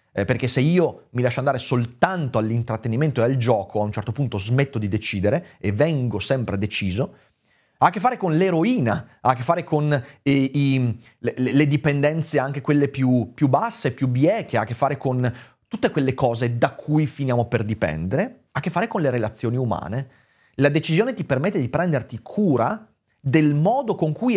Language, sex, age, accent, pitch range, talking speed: Italian, male, 30-49, native, 115-160 Hz, 185 wpm